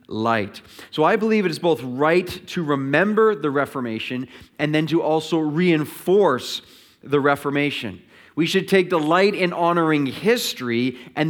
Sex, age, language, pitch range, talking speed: male, 30-49, English, 145-180 Hz, 145 wpm